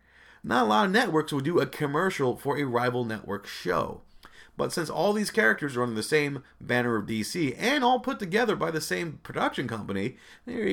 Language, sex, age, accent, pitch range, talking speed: English, male, 30-49, American, 115-175 Hz, 200 wpm